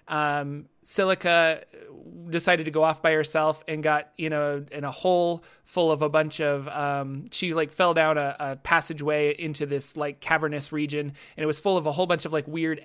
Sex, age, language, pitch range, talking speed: male, 20-39, English, 150-170 Hz, 215 wpm